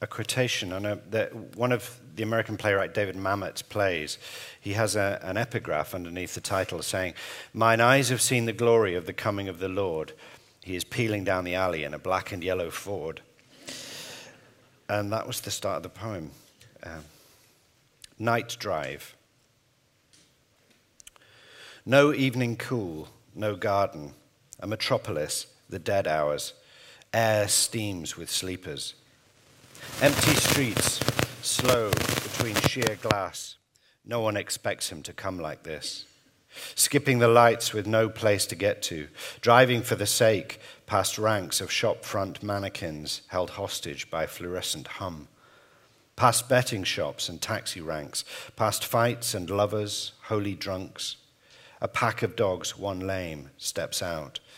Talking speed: 140 wpm